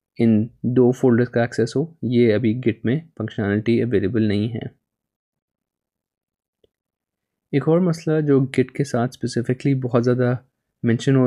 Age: 20-39